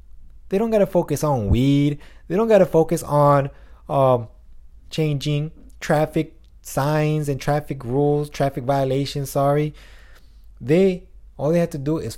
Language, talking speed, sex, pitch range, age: English, 150 wpm, male, 100-145 Hz, 20-39